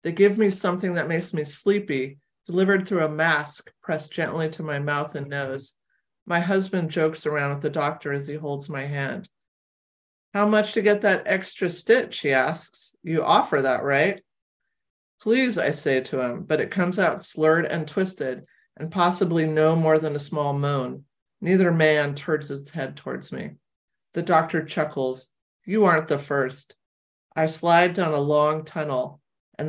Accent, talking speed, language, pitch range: American, 170 wpm, English, 145-180 Hz